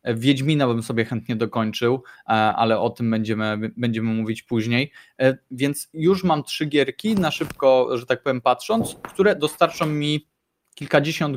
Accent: native